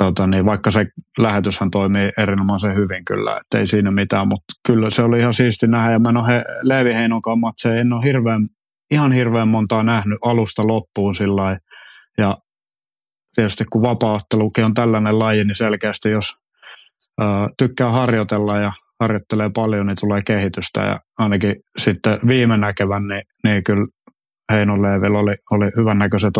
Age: 30-49